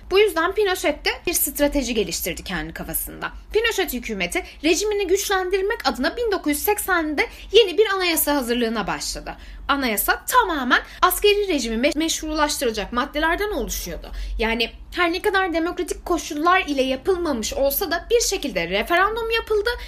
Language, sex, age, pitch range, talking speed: Turkish, female, 10-29, 240-350 Hz, 125 wpm